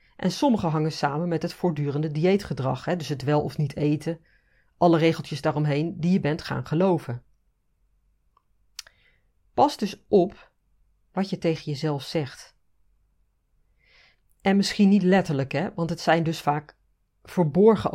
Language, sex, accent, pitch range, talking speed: Dutch, female, Dutch, 135-180 Hz, 135 wpm